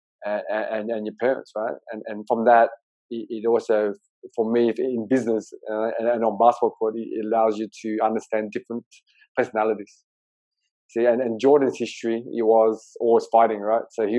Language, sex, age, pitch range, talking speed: English, male, 20-39, 110-115 Hz, 170 wpm